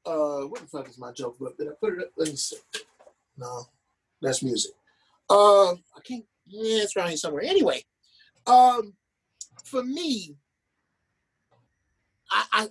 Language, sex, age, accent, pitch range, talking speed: English, male, 30-49, American, 145-235 Hz, 150 wpm